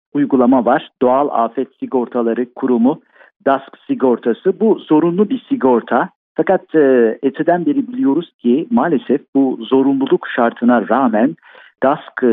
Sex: male